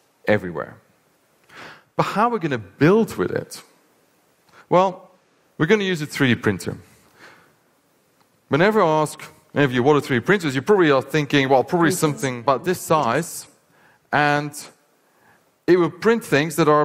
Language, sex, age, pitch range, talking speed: English, male, 40-59, 140-180 Hz, 160 wpm